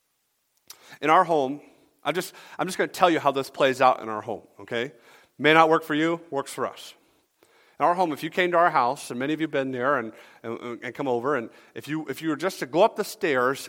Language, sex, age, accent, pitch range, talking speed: English, male, 40-59, American, 120-165 Hz, 265 wpm